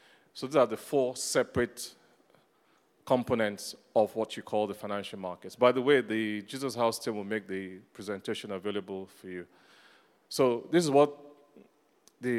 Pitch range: 100-120 Hz